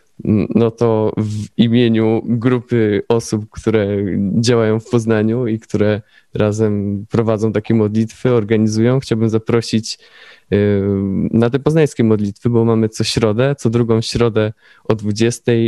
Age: 20-39